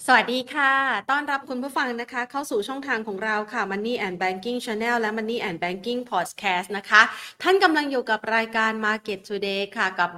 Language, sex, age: Thai, female, 30-49